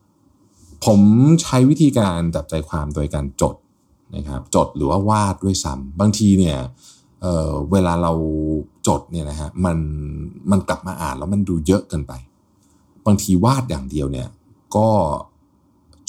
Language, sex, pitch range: Thai, male, 70-95 Hz